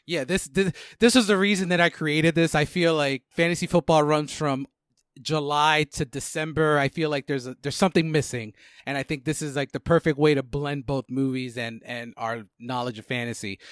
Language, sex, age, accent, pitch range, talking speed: English, male, 30-49, American, 130-165 Hz, 210 wpm